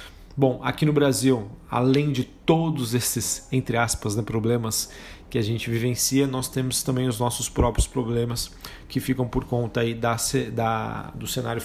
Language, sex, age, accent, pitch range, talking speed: Portuguese, male, 40-59, Brazilian, 115-130 Hz, 165 wpm